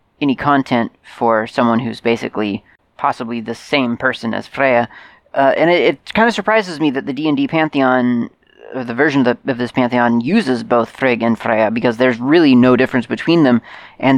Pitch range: 115-130 Hz